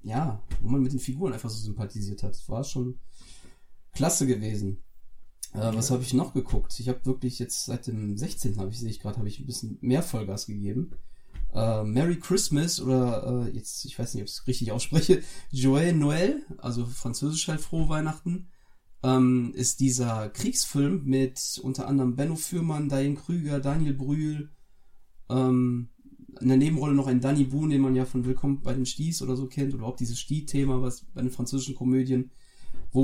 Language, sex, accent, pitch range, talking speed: German, male, German, 120-140 Hz, 185 wpm